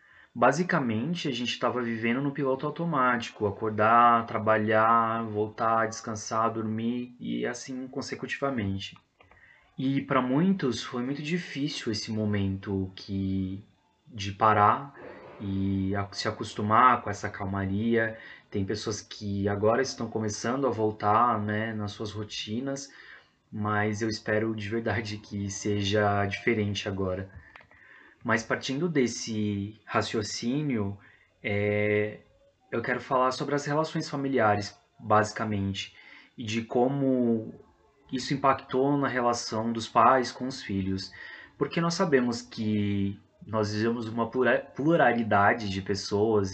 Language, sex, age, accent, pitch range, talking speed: Portuguese, male, 20-39, Brazilian, 105-120 Hz, 115 wpm